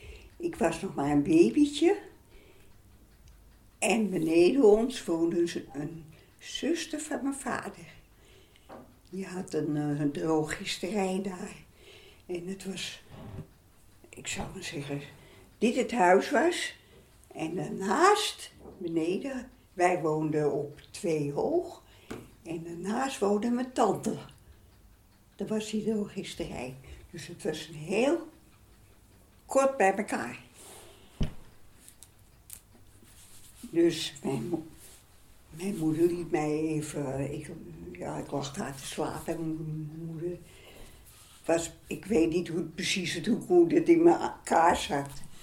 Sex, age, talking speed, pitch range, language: female, 60-79, 115 wpm, 150-215 Hz, Dutch